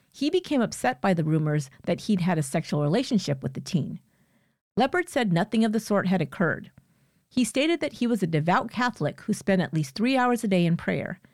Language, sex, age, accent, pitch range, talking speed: English, female, 50-69, American, 150-215 Hz, 215 wpm